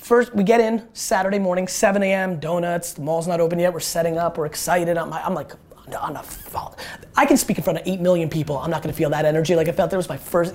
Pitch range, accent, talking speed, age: 145-175 Hz, American, 255 wpm, 30-49